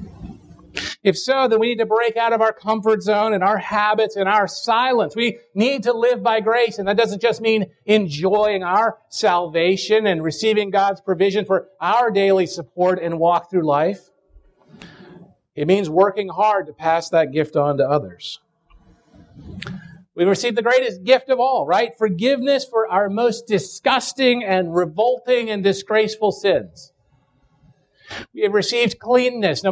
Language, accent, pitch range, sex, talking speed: English, American, 170-225 Hz, male, 160 wpm